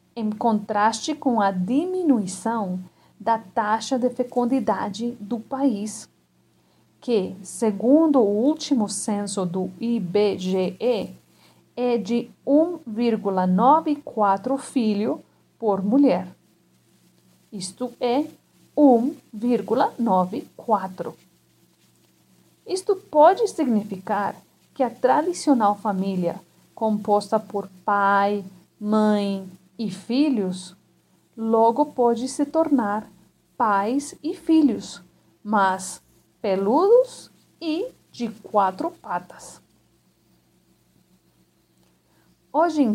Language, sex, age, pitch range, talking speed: Portuguese, female, 40-59, 205-280 Hz, 75 wpm